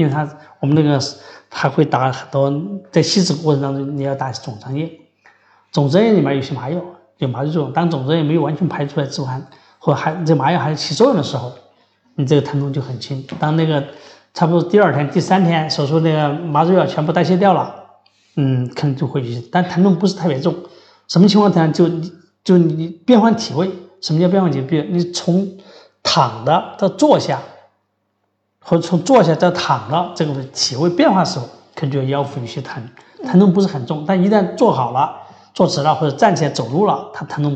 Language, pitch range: Chinese, 140-175 Hz